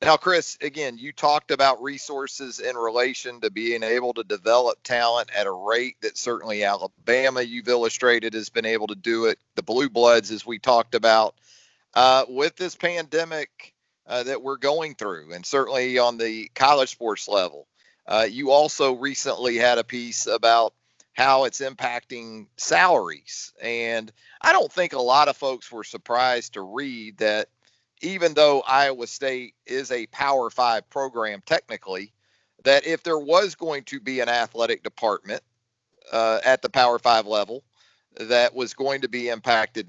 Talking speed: 165 wpm